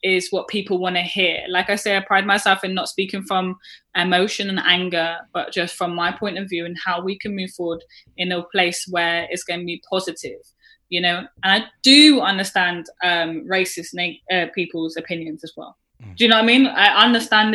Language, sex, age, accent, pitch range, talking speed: English, female, 10-29, British, 175-200 Hz, 215 wpm